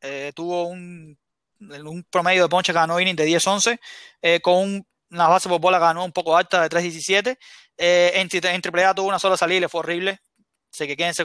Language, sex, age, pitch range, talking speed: Spanish, male, 20-39, 165-195 Hz, 195 wpm